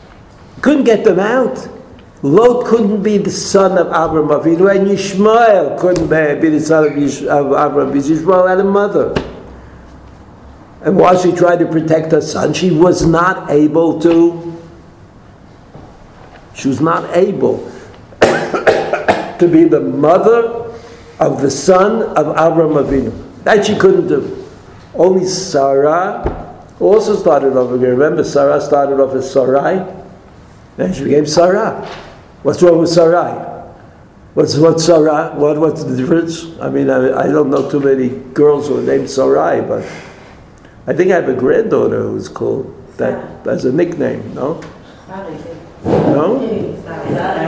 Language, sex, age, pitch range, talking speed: English, male, 60-79, 145-195 Hz, 140 wpm